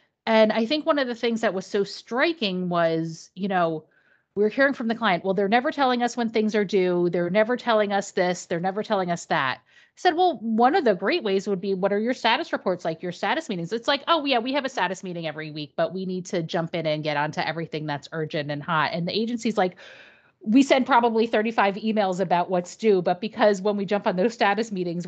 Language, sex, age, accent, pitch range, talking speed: English, female, 30-49, American, 180-235 Hz, 245 wpm